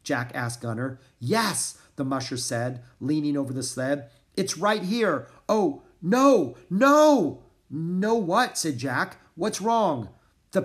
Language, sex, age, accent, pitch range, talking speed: English, male, 40-59, American, 125-195 Hz, 135 wpm